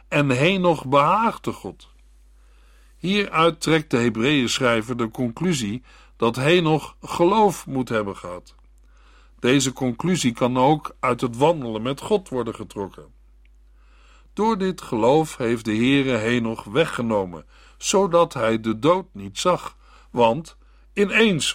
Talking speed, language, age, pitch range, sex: 120 wpm, Dutch, 60-79, 110-160 Hz, male